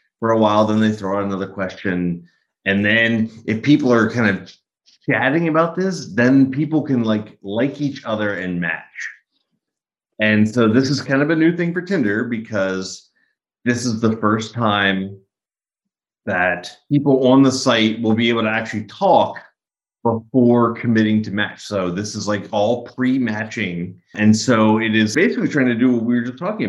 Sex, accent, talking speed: male, American, 180 wpm